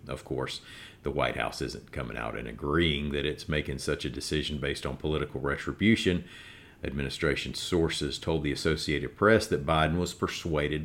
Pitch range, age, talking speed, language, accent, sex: 70-85 Hz, 40-59, 165 wpm, English, American, male